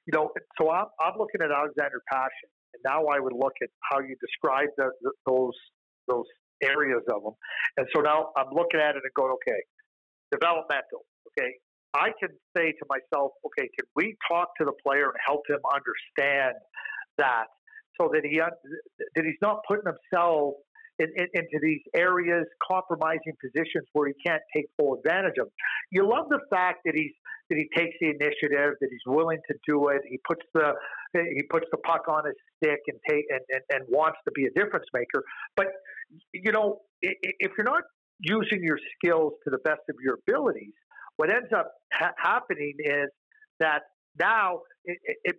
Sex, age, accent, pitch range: male, 50-69, American, 150-205 Hz